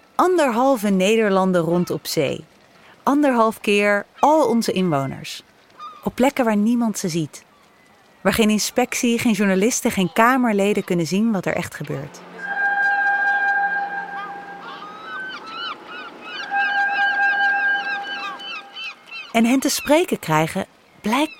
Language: Dutch